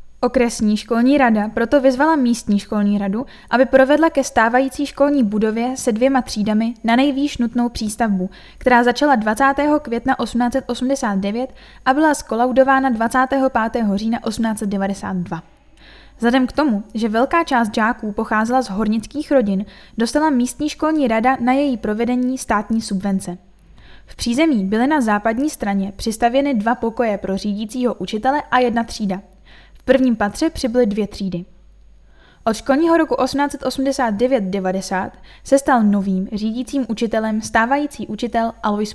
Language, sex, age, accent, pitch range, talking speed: Czech, female, 10-29, native, 215-265 Hz, 130 wpm